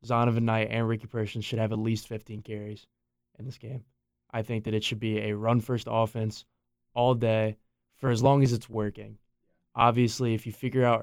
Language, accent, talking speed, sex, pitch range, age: English, American, 195 wpm, male, 110-120 Hz, 20-39